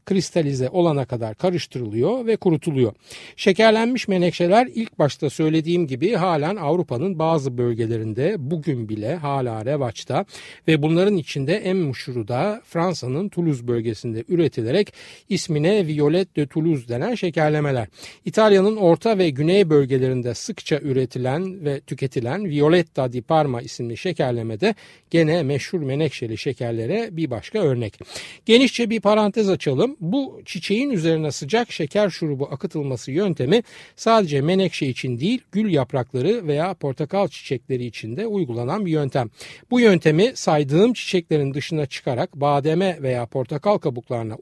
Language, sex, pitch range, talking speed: Turkish, male, 130-190 Hz, 125 wpm